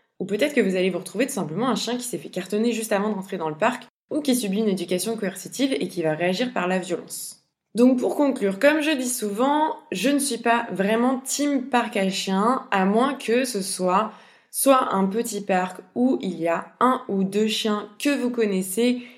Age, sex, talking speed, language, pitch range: 20-39, female, 220 wpm, French, 185-235 Hz